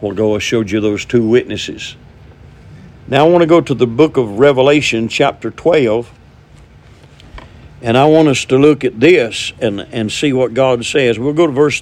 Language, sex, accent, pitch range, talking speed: English, male, American, 115-145 Hz, 195 wpm